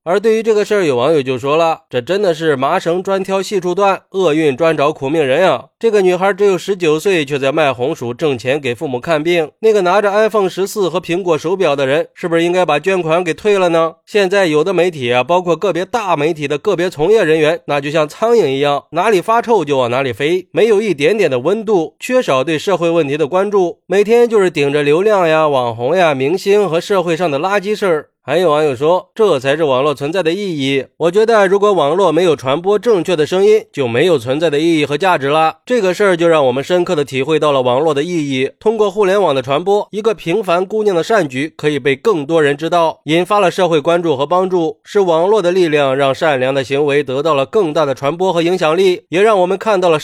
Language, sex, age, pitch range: Chinese, male, 20-39, 150-200 Hz